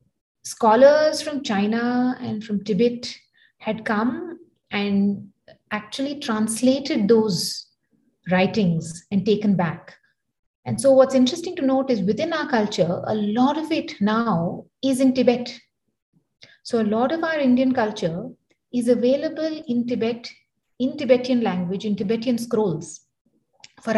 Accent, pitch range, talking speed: Indian, 200-260 Hz, 130 wpm